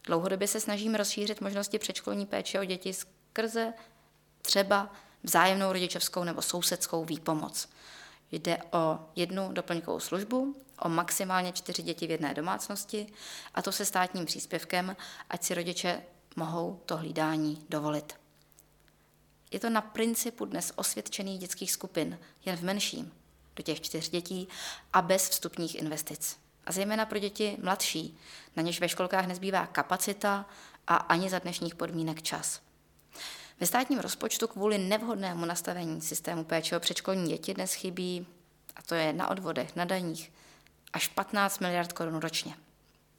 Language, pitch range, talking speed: Czech, 165-200 Hz, 140 wpm